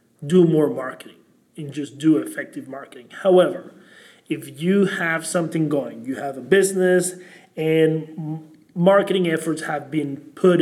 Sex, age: male, 30-49